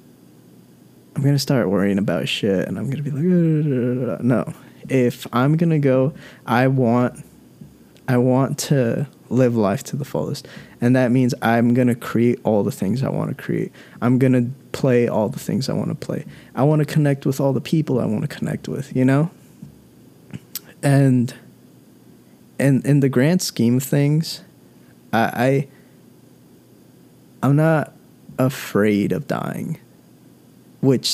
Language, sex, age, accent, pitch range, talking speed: English, male, 20-39, American, 115-140 Hz, 165 wpm